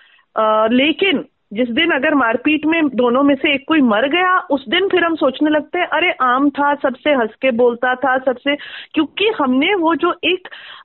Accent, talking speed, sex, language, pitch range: native, 190 wpm, female, Hindi, 235-325 Hz